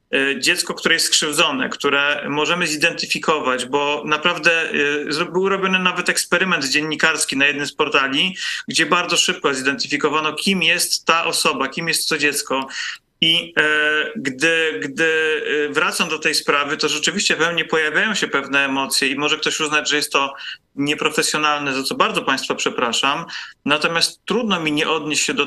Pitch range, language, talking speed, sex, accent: 145-170 Hz, Polish, 155 wpm, male, native